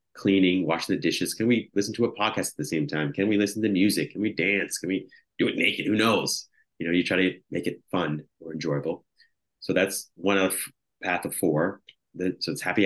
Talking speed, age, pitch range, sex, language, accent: 235 wpm, 30-49, 80-105 Hz, male, English, American